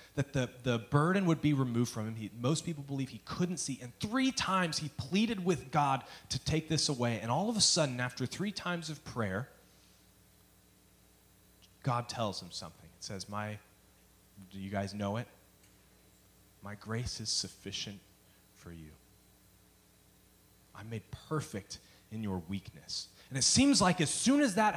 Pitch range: 110-170 Hz